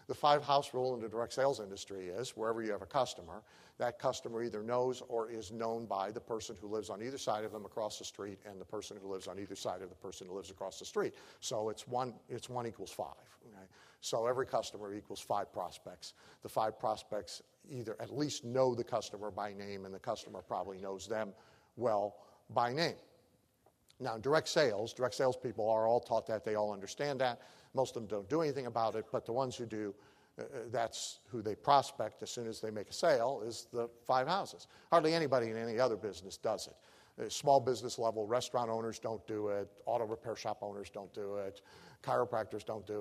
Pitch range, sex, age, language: 105-130 Hz, male, 50-69, English